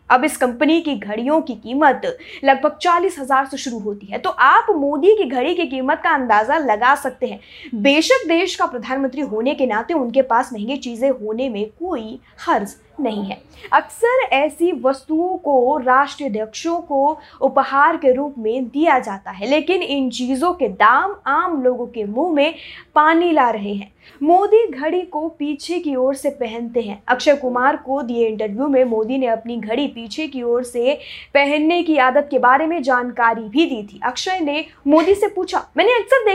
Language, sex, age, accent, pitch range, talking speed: Hindi, female, 20-39, native, 250-330 Hz, 145 wpm